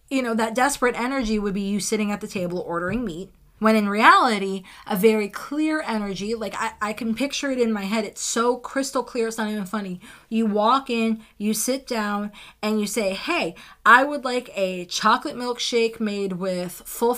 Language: English